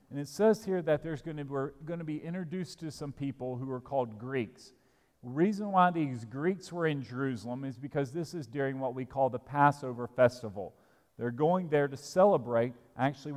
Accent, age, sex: American, 40-59, male